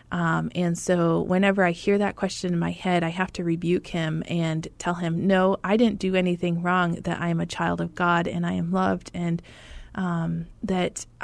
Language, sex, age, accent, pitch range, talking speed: English, female, 30-49, American, 175-210 Hz, 210 wpm